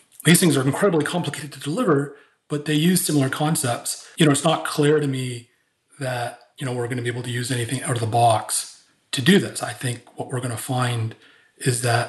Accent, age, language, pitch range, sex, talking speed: American, 30-49, English, 120-140 Hz, male, 230 wpm